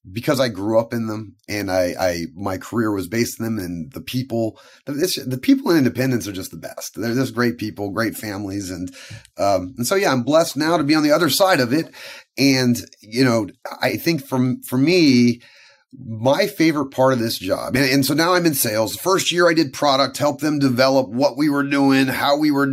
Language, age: English, 30-49